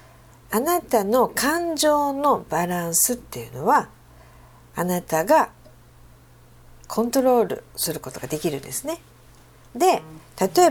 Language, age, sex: Japanese, 50-69, female